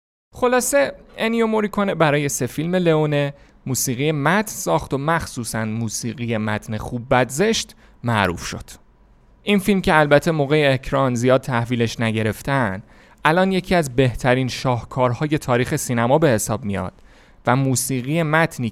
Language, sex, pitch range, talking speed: Persian, male, 115-155 Hz, 130 wpm